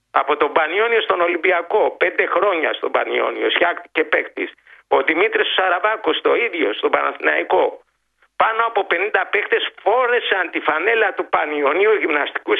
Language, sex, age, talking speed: Greek, male, 50-69, 135 wpm